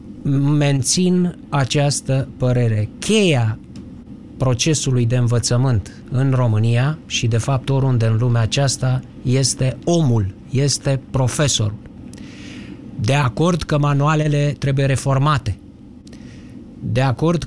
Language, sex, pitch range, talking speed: Romanian, male, 125-155 Hz, 95 wpm